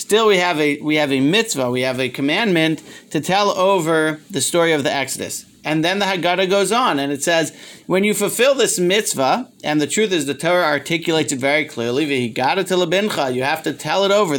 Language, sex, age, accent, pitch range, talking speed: English, male, 40-59, American, 150-195 Hz, 210 wpm